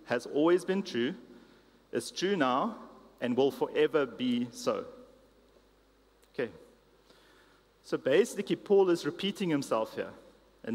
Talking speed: 115 wpm